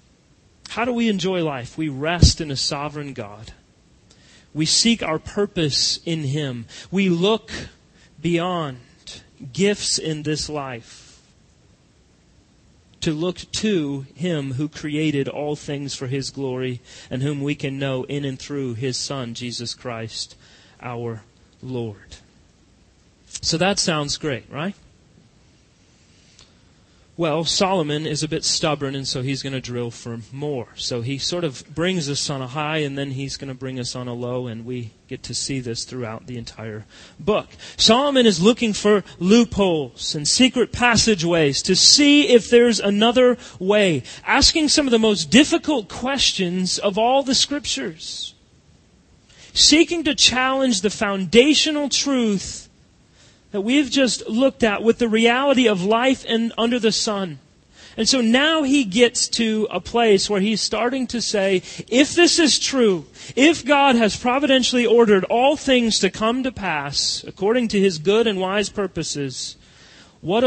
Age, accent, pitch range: 30-49, American, 135-230 Hz